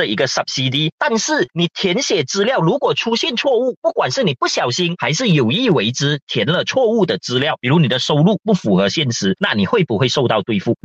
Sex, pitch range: male, 150-225 Hz